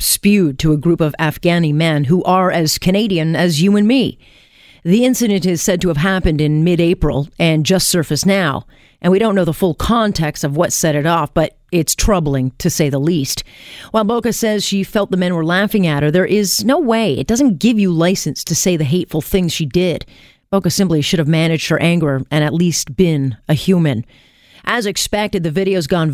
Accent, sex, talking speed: American, female, 215 wpm